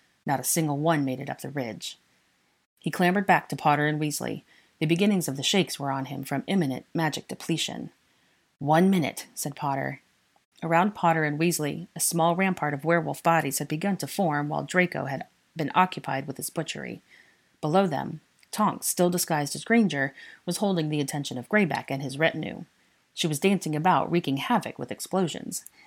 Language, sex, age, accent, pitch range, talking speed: English, female, 30-49, American, 145-180 Hz, 180 wpm